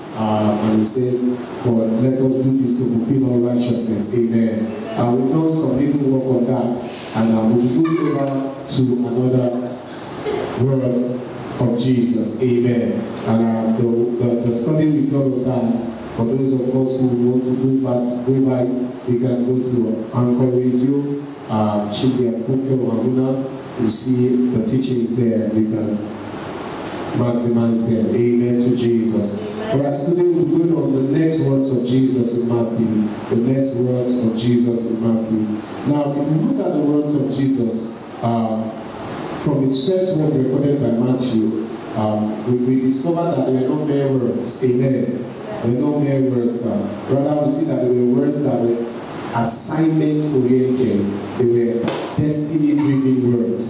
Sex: male